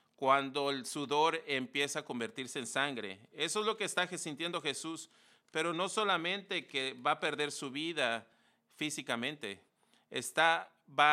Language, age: English, 40-59